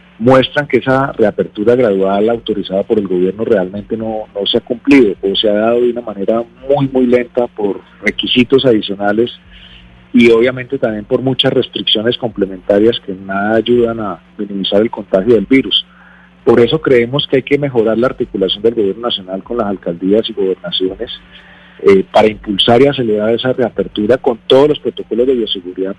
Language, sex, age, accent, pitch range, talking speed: Spanish, male, 40-59, Colombian, 100-125 Hz, 170 wpm